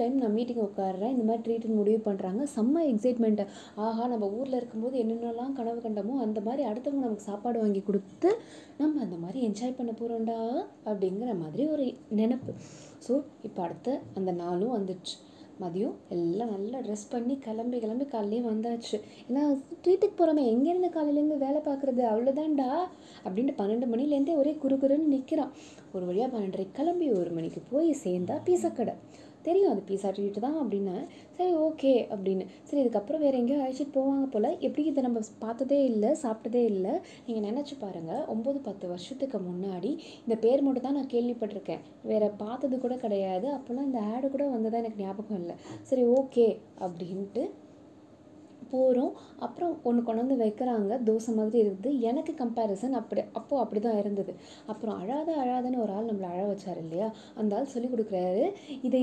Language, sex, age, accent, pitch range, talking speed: Tamil, female, 20-39, native, 210-275 Hz, 155 wpm